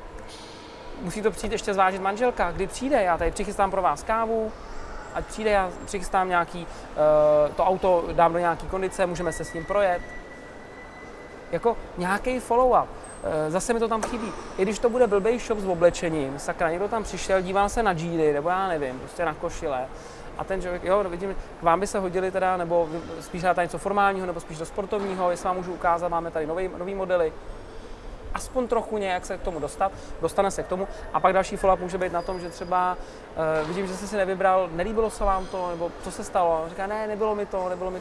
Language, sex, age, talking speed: Czech, male, 30-49, 210 wpm